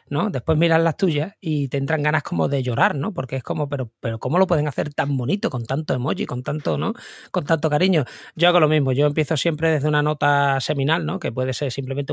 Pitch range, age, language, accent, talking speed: 135-175 Hz, 30-49, Spanish, Spanish, 245 wpm